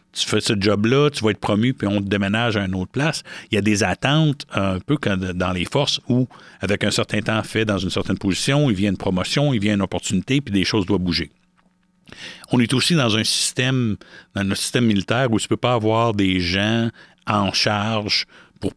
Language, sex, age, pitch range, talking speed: French, male, 60-79, 100-135 Hz, 225 wpm